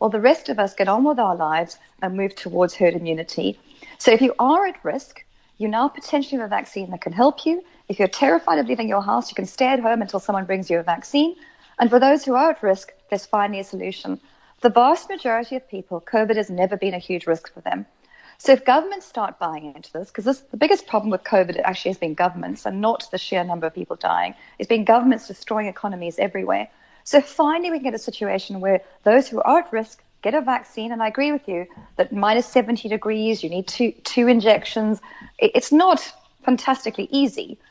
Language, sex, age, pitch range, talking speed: English, female, 40-59, 195-285 Hz, 220 wpm